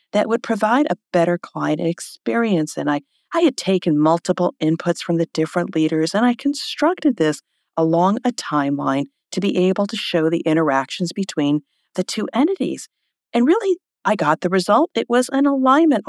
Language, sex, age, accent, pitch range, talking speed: English, female, 50-69, American, 165-240 Hz, 170 wpm